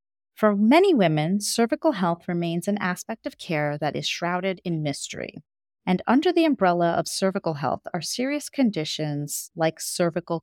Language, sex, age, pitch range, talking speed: English, female, 30-49, 155-220 Hz, 155 wpm